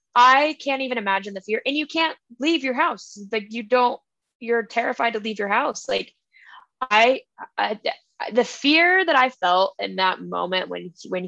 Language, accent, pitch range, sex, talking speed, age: English, American, 205-270 Hz, female, 180 wpm, 10-29